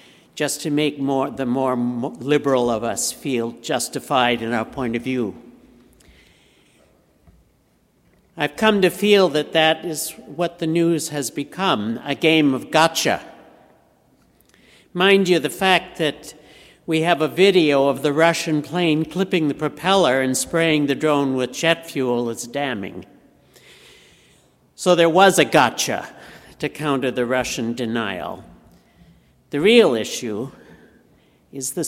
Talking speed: 135 wpm